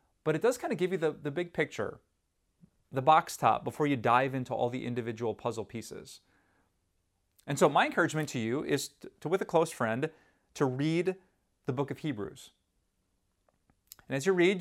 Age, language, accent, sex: 30-49, English, American, male